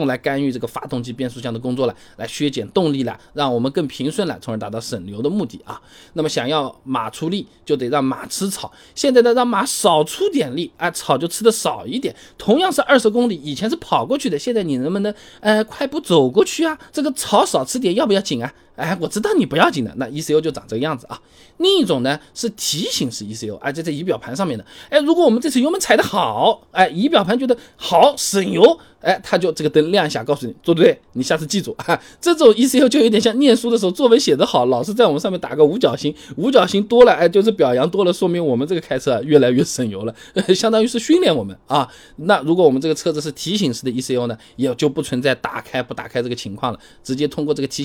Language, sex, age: Chinese, male, 20-39